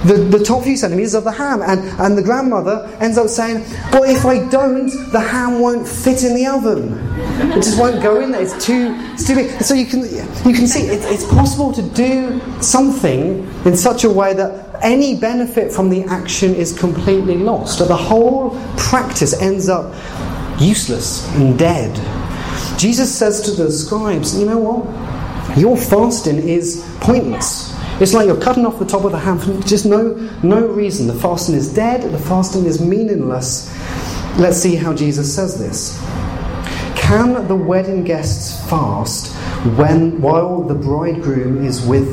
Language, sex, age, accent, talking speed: English, male, 30-49, British, 170 wpm